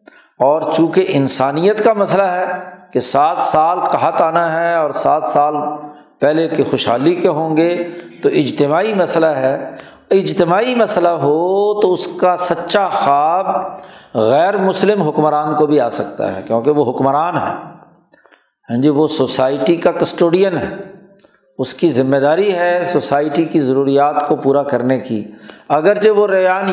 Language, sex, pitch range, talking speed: Urdu, male, 145-180 Hz, 150 wpm